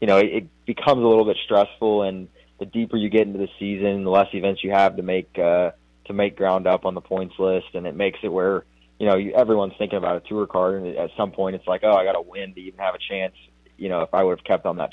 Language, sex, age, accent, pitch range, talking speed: English, male, 20-39, American, 90-100 Hz, 285 wpm